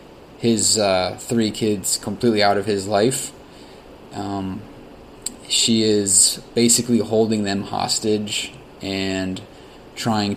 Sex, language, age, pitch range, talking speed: male, English, 20-39, 100-115 Hz, 105 wpm